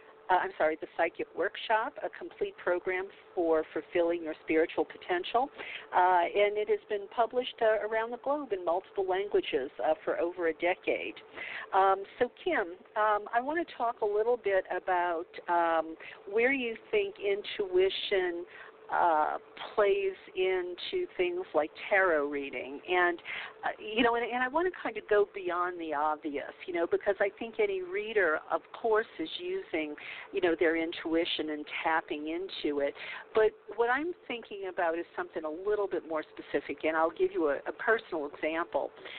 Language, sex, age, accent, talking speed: English, female, 50-69, American, 170 wpm